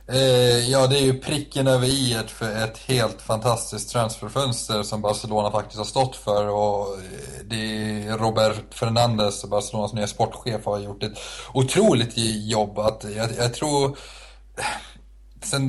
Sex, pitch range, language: male, 105-120 Hz, Swedish